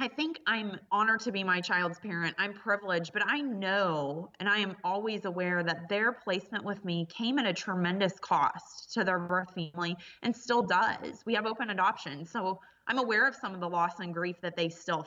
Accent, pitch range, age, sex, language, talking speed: American, 175-210 Hz, 20-39, female, English, 210 wpm